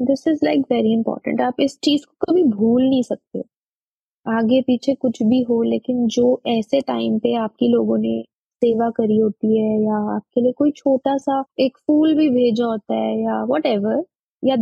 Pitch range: 220-275 Hz